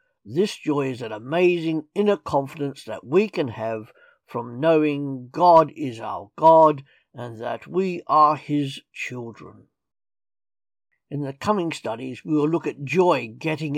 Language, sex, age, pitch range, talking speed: English, male, 60-79, 130-170 Hz, 145 wpm